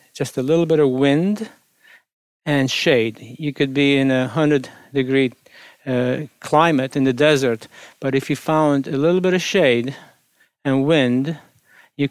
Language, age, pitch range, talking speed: English, 50-69, 130-150 Hz, 150 wpm